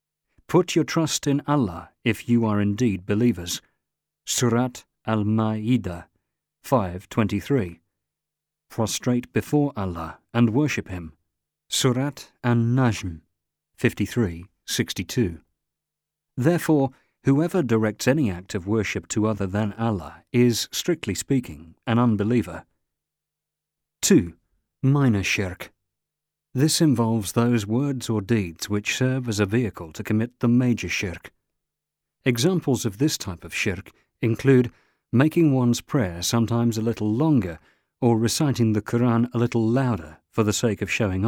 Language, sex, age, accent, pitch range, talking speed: English, male, 40-59, British, 95-125 Hz, 125 wpm